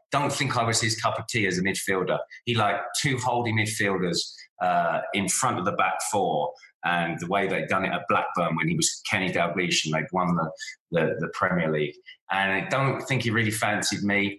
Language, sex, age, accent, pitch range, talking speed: English, male, 20-39, British, 100-125 Hz, 215 wpm